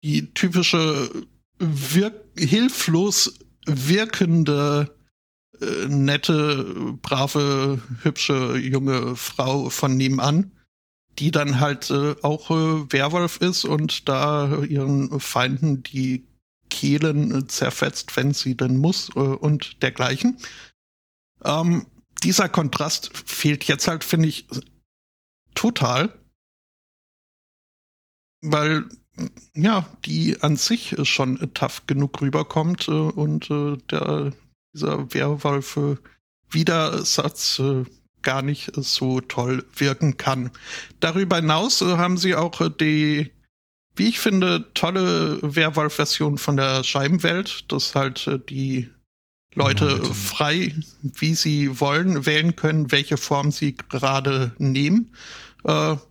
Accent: German